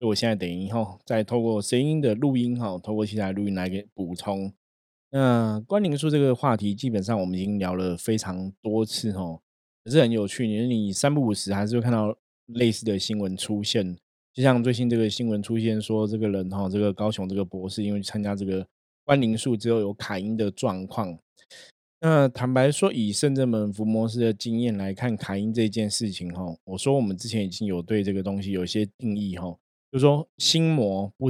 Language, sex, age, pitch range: Chinese, male, 20-39, 100-120 Hz